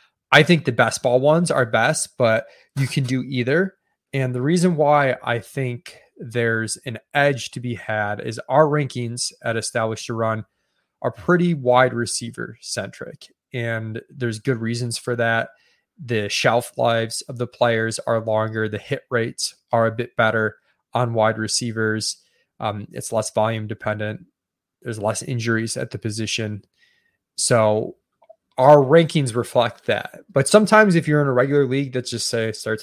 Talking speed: 165 wpm